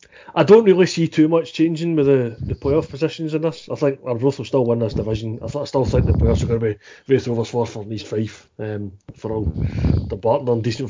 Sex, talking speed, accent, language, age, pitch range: male, 240 wpm, British, English, 30-49, 110-140 Hz